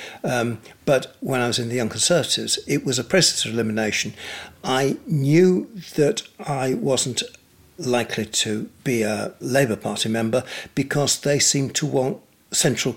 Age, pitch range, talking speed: 60-79, 110-145 Hz, 155 wpm